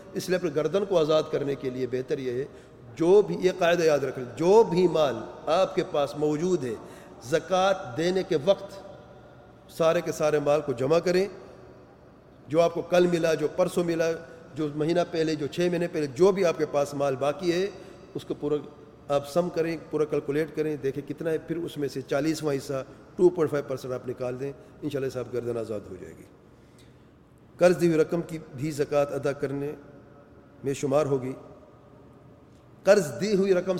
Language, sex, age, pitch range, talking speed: English, male, 40-59, 145-180 Hz, 160 wpm